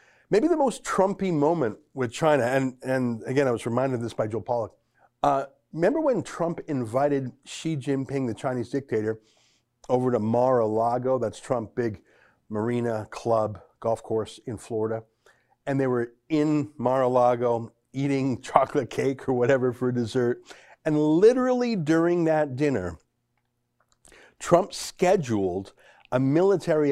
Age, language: 50-69, English